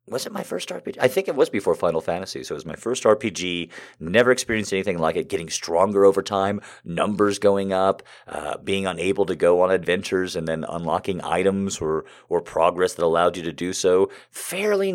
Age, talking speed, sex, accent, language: 30-49, 205 wpm, male, American, English